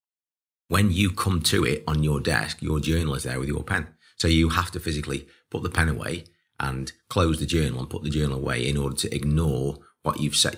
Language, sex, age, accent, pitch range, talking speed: English, male, 40-59, British, 70-85 Hz, 225 wpm